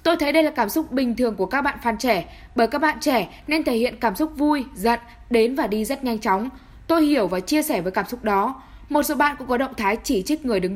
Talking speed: 280 wpm